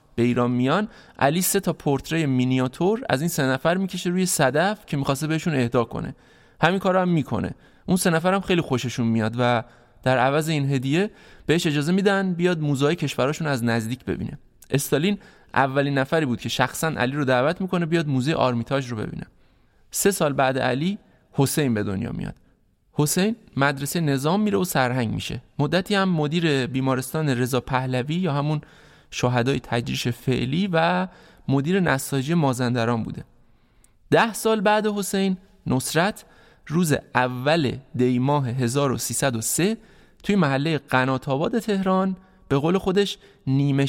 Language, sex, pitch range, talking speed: Persian, male, 130-180 Hz, 150 wpm